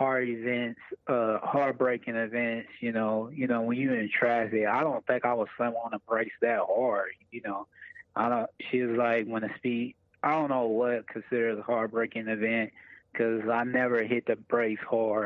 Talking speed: 190 wpm